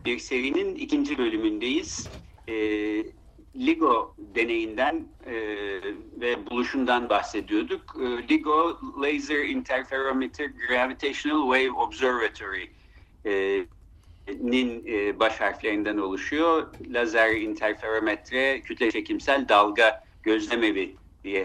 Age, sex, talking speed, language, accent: 60-79, male, 80 wpm, Turkish, native